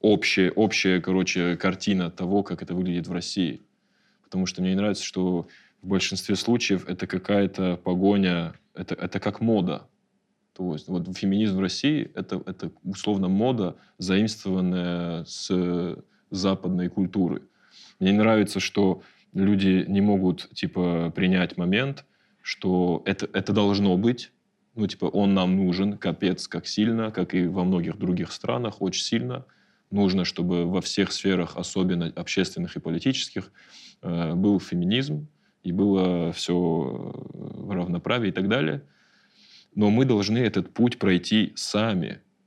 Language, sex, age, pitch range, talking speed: Russian, male, 20-39, 90-100 Hz, 135 wpm